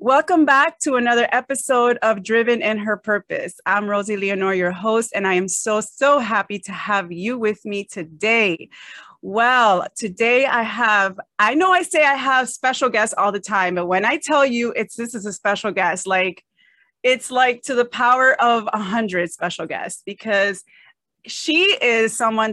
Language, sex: English, female